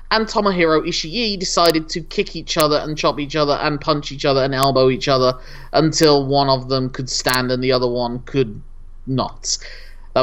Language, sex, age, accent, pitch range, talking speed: English, male, 20-39, British, 140-185 Hz, 195 wpm